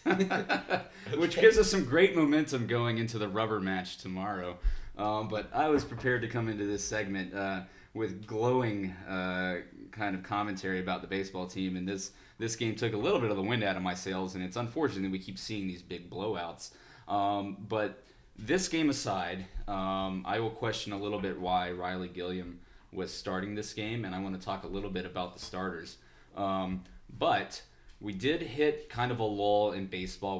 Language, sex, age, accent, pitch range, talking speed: English, male, 20-39, American, 90-105 Hz, 195 wpm